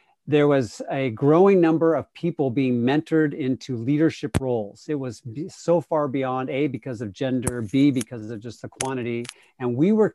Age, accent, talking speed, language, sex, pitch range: 50-69, American, 175 wpm, English, male, 120-145 Hz